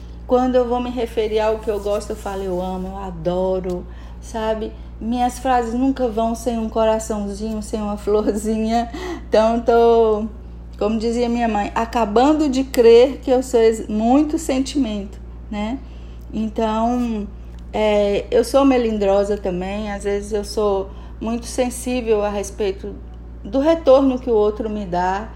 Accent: Brazilian